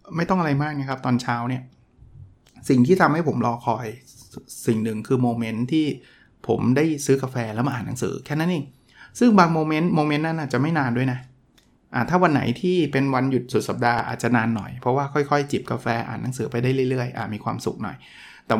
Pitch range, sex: 125-160 Hz, male